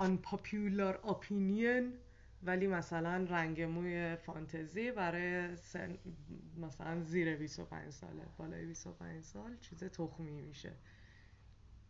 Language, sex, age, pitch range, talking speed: Persian, female, 20-39, 155-205 Hz, 90 wpm